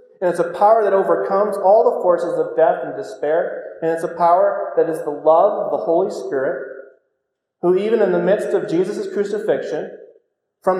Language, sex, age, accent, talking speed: English, male, 30-49, American, 190 wpm